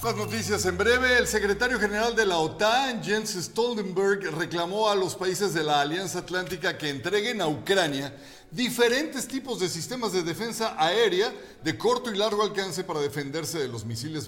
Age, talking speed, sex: 50-69, 170 wpm, male